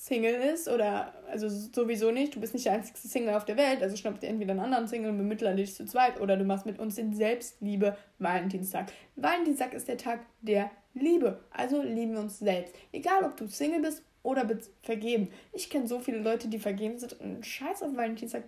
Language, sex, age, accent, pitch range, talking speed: German, female, 20-39, German, 210-270 Hz, 215 wpm